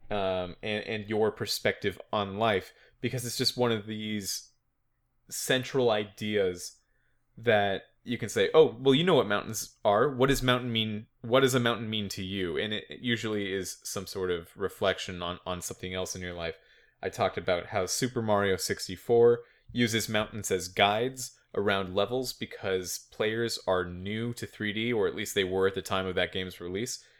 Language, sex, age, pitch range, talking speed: English, male, 20-39, 95-125 Hz, 185 wpm